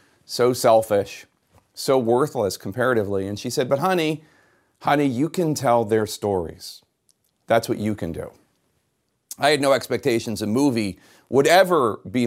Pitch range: 110-150 Hz